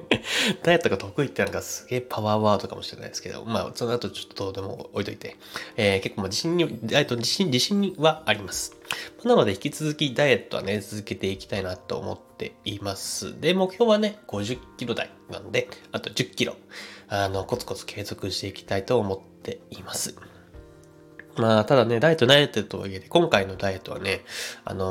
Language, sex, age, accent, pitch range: Japanese, male, 20-39, native, 100-145 Hz